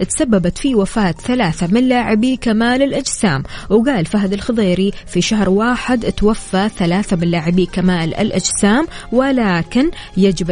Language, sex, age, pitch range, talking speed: Arabic, female, 20-39, 185-230 Hz, 125 wpm